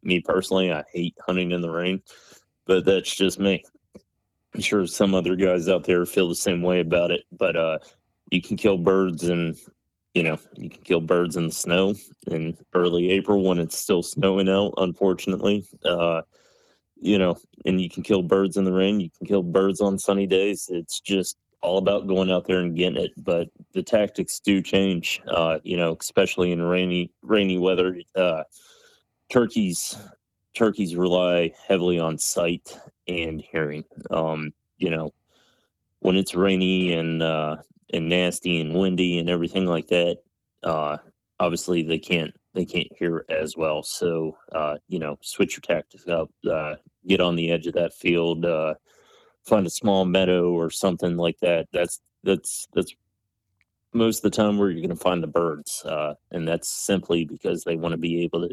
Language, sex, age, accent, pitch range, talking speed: English, male, 30-49, American, 85-95 Hz, 180 wpm